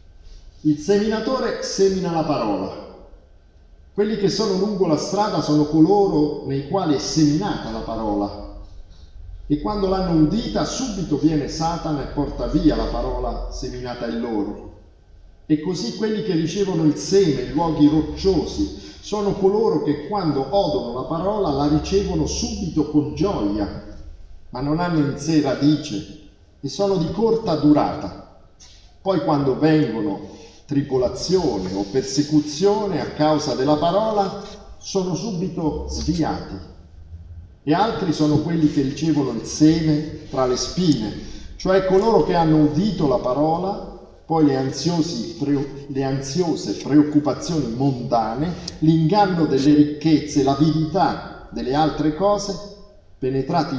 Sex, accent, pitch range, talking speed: male, native, 120-175 Hz, 125 wpm